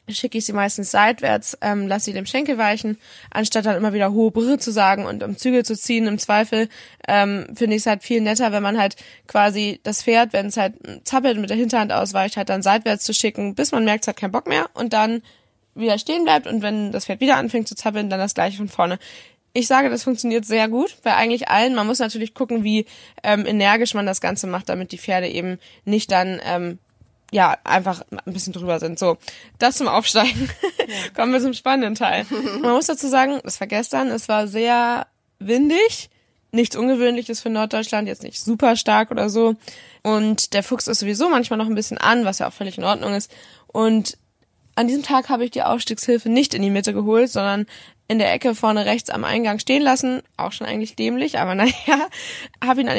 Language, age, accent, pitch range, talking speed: German, 20-39, German, 205-245 Hz, 215 wpm